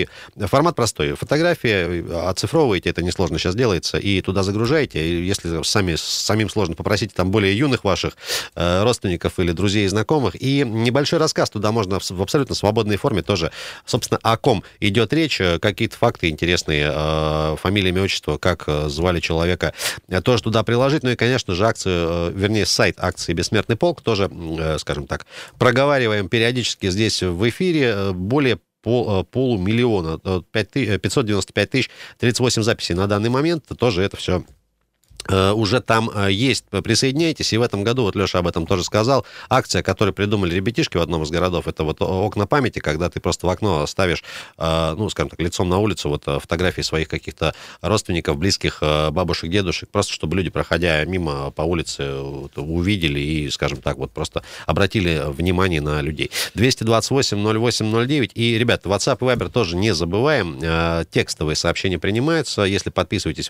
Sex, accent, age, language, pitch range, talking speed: male, native, 30-49, Russian, 85-115 Hz, 155 wpm